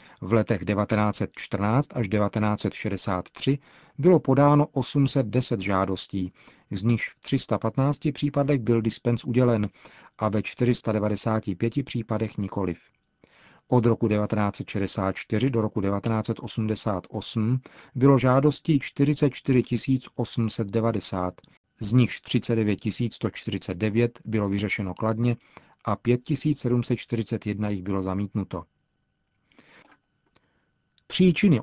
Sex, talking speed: male, 85 wpm